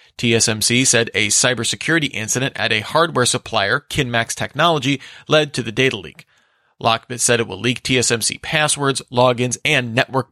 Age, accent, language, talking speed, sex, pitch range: 40-59, American, English, 150 wpm, male, 115-140 Hz